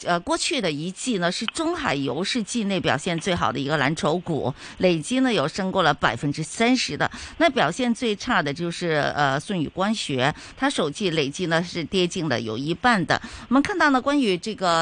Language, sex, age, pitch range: Chinese, female, 50-69, 165-245 Hz